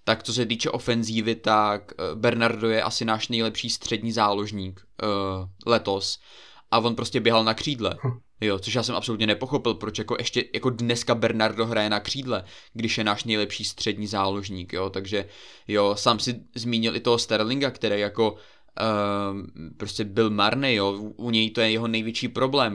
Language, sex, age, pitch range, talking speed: Czech, male, 20-39, 105-120 Hz, 170 wpm